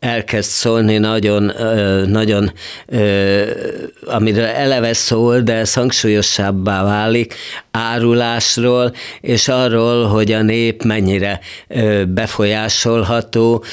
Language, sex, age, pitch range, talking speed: Hungarian, male, 50-69, 100-115 Hz, 80 wpm